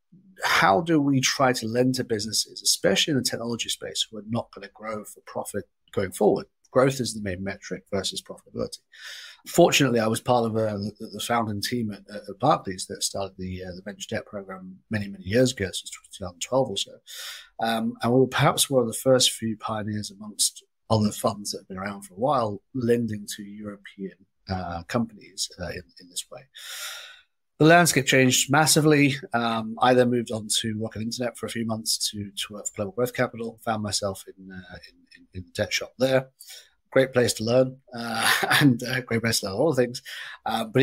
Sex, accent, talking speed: male, British, 205 wpm